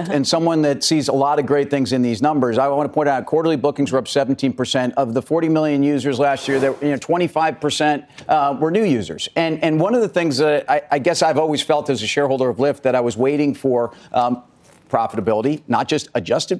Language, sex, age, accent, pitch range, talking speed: English, male, 50-69, American, 130-160 Hz, 240 wpm